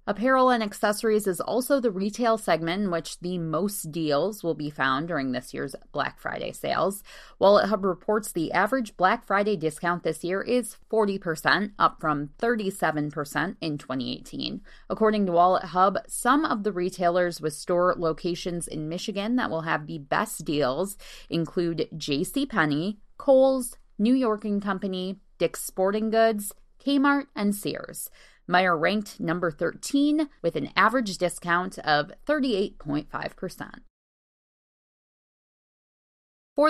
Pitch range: 165-220 Hz